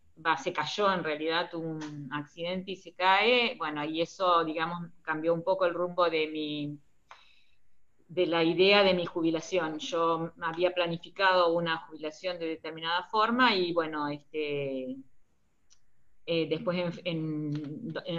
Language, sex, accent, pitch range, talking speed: Spanish, female, Argentinian, 155-195 Hz, 140 wpm